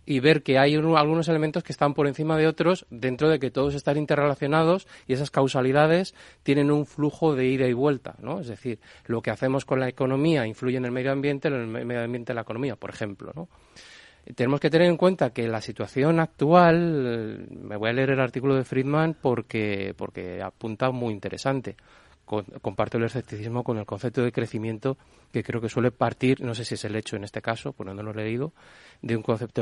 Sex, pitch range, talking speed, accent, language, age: male, 115-145 Hz, 210 wpm, Spanish, Spanish, 30-49